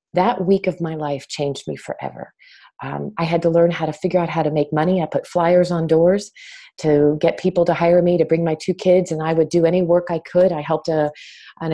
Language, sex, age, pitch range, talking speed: English, female, 30-49, 155-180 Hz, 245 wpm